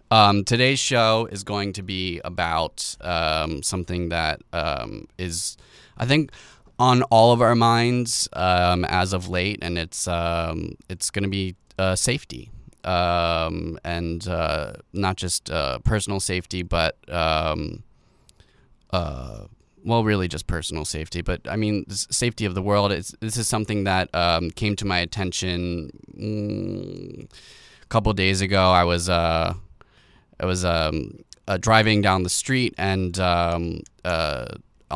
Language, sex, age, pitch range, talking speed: English, male, 20-39, 85-105 Hz, 145 wpm